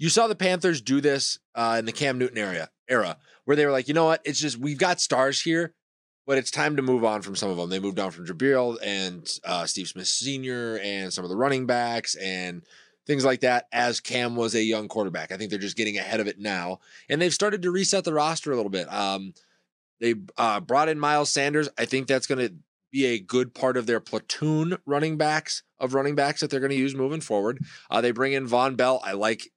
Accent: American